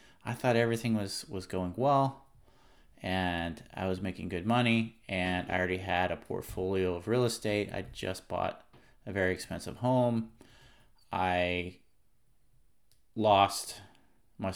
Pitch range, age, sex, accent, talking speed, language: 95-120 Hz, 30-49, male, American, 130 wpm, English